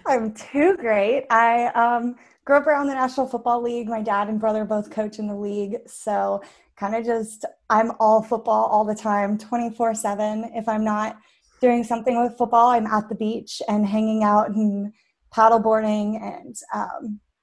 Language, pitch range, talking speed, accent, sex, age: English, 205-235 Hz, 170 wpm, American, female, 20-39